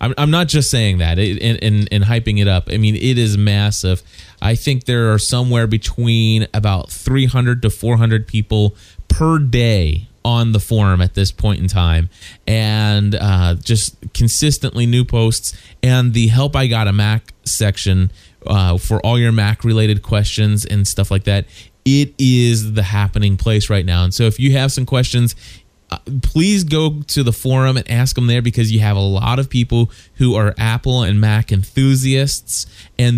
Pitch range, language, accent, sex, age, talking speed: 105-125 Hz, English, American, male, 20-39, 175 wpm